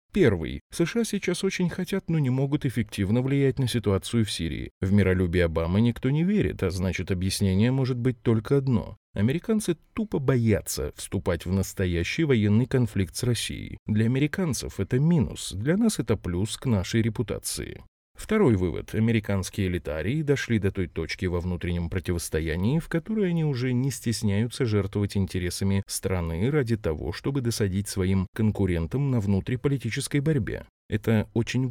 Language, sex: Russian, male